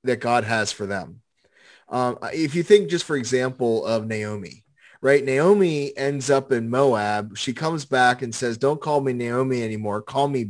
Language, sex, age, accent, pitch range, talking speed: English, male, 30-49, American, 120-150 Hz, 185 wpm